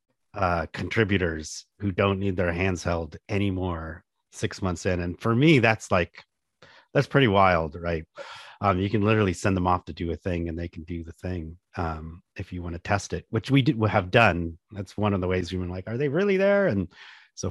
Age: 40-59